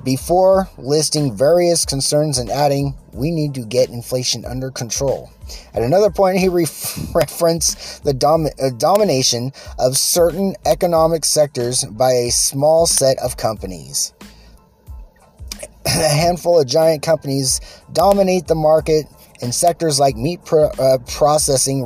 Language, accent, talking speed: English, American, 125 wpm